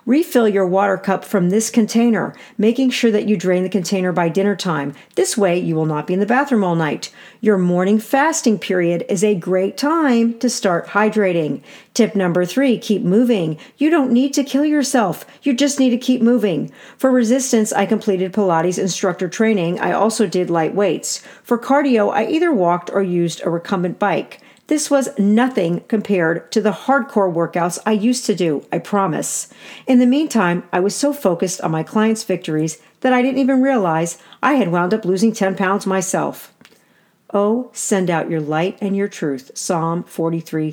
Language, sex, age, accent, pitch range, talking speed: English, female, 50-69, American, 175-235 Hz, 185 wpm